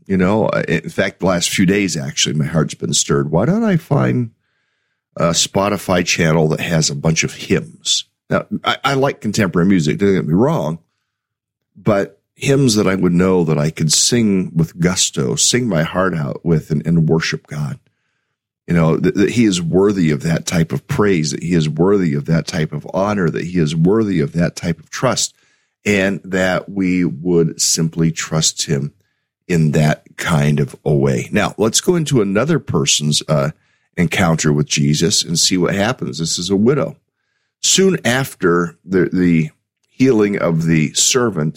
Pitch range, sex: 80-105 Hz, male